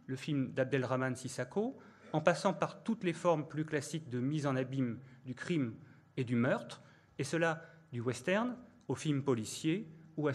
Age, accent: 30-49, French